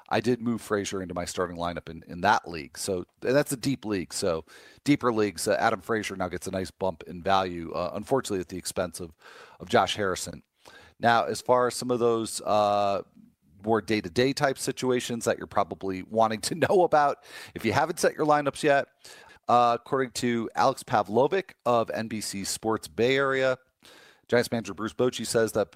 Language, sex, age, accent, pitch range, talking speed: English, male, 40-59, American, 95-125 Hz, 190 wpm